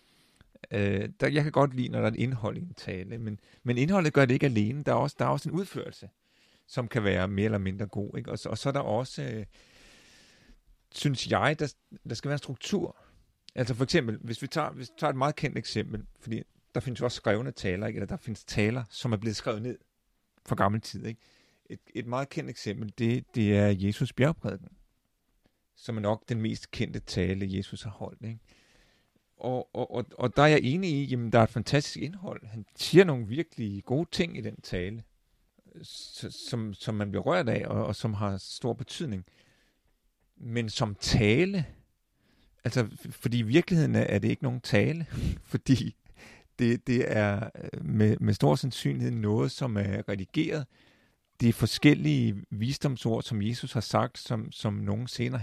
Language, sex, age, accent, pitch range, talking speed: Danish, male, 40-59, native, 105-140 Hz, 195 wpm